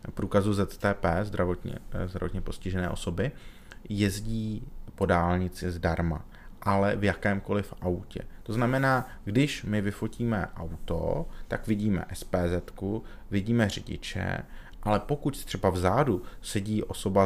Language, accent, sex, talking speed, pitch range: Czech, native, male, 110 wpm, 95-110 Hz